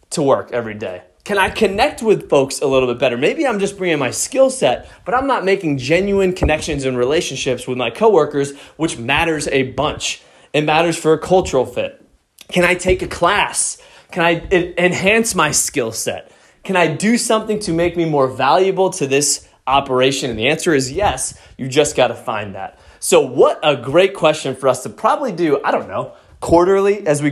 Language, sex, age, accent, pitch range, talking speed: English, male, 20-39, American, 130-175 Hz, 200 wpm